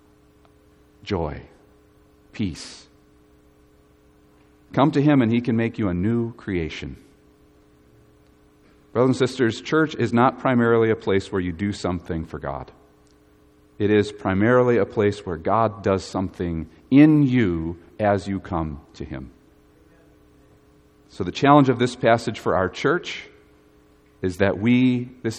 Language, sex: English, male